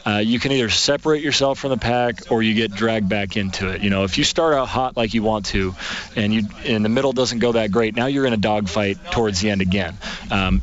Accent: American